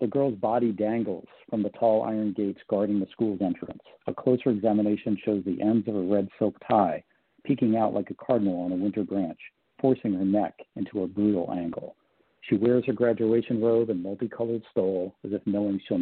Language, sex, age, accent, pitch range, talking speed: English, male, 50-69, American, 100-120 Hz, 195 wpm